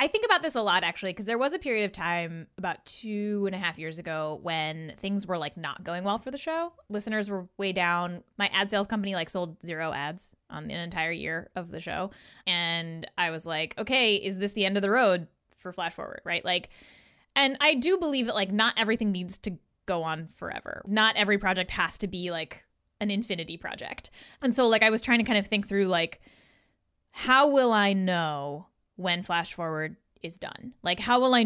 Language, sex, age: English, female, 20-39